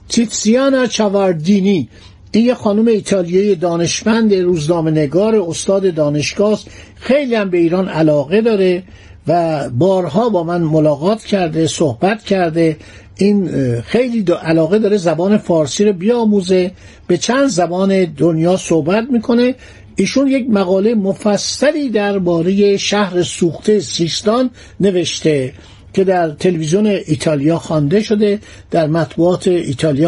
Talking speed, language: 110 wpm, Persian